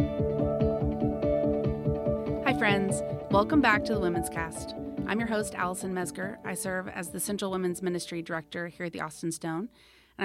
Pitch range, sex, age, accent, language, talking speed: 165-205 Hz, female, 30-49, American, English, 160 wpm